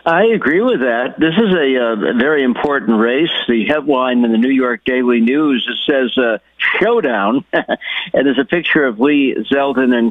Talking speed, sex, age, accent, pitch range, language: 180 wpm, male, 60-79, American, 120-150 Hz, English